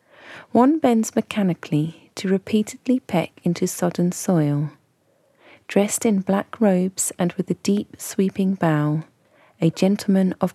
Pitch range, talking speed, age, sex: 165-200 Hz, 125 wpm, 30-49, female